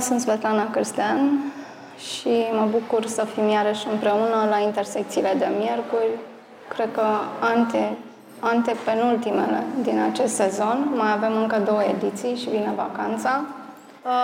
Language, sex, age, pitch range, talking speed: Romanian, female, 20-39, 220-245 Hz, 125 wpm